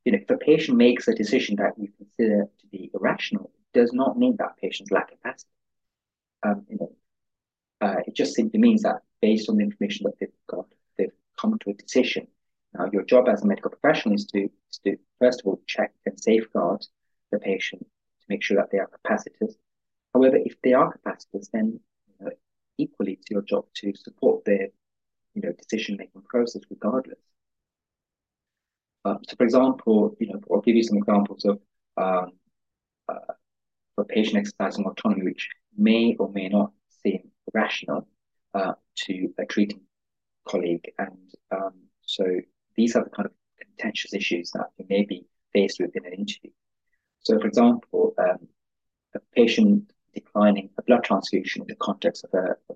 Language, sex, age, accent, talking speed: English, male, 30-49, British, 175 wpm